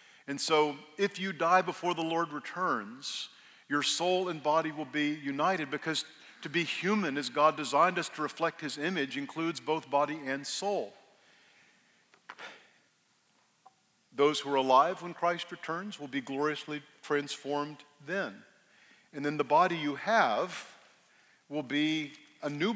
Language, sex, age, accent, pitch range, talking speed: English, male, 50-69, American, 140-165 Hz, 145 wpm